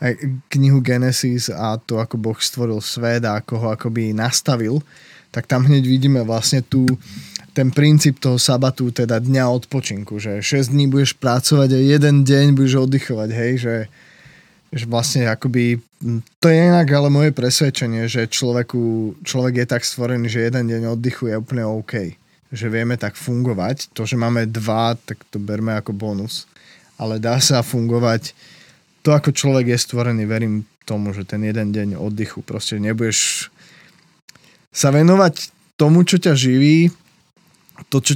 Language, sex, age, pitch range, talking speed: Slovak, male, 20-39, 115-140 Hz, 155 wpm